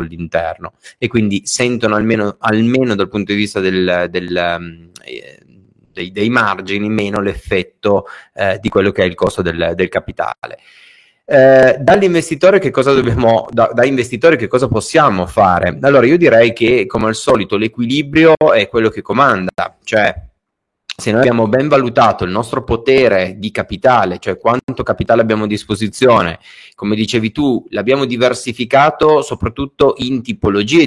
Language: Italian